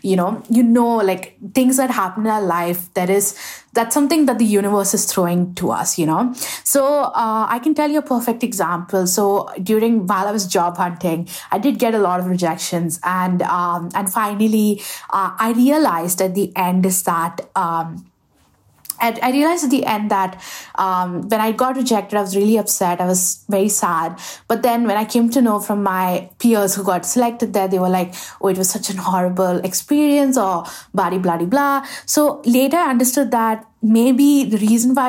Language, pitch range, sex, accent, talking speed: English, 185-235 Hz, female, Indian, 200 wpm